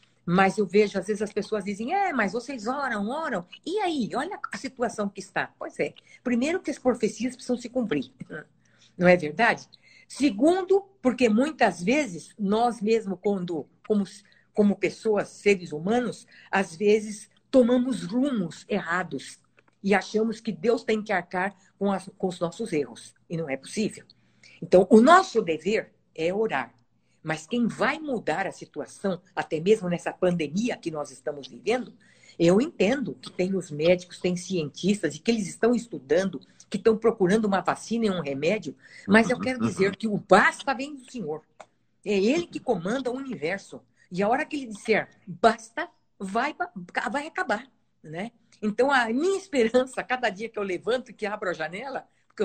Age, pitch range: 50-69, 185-245 Hz